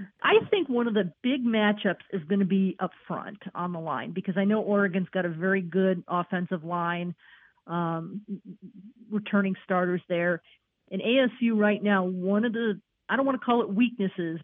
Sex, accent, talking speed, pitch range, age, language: female, American, 185 wpm, 180-210 Hz, 40-59, English